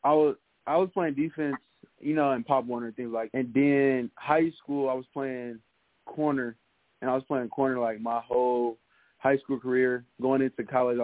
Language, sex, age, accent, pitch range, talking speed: English, male, 20-39, American, 115-130 Hz, 190 wpm